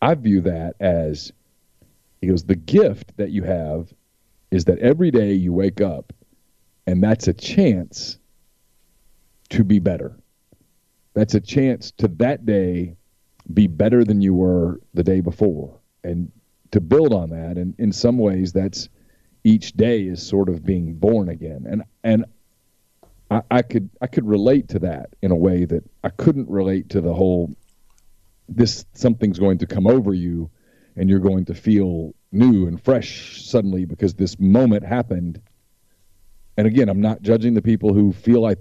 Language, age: English, 40-59